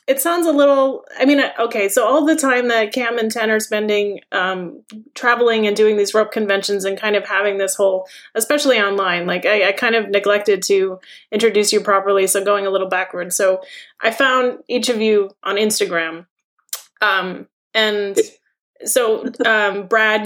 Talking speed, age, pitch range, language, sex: 180 wpm, 20-39, 200-230 Hz, English, female